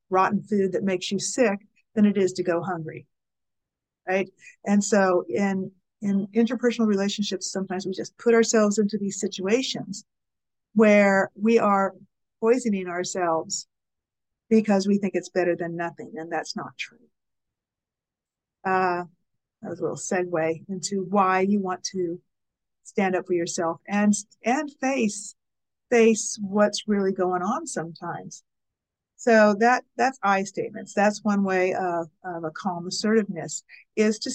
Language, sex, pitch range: English, female, 180-215 Hz